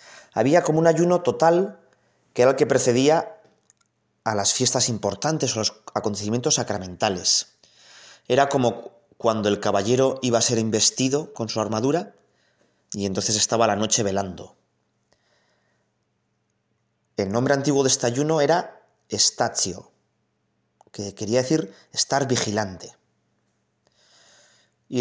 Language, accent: Spanish, Spanish